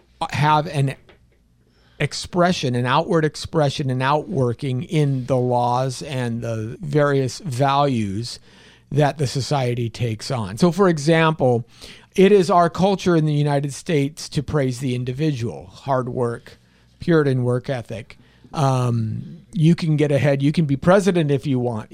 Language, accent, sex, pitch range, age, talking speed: English, American, male, 125-165 Hz, 50-69, 140 wpm